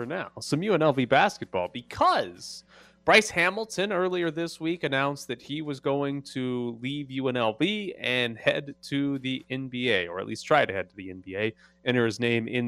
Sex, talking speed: male, 170 wpm